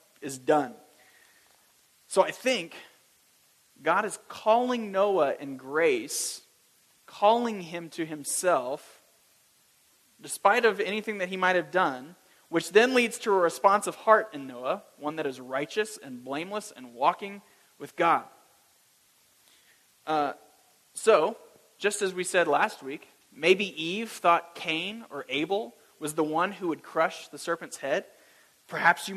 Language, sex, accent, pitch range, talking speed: English, male, American, 140-205 Hz, 140 wpm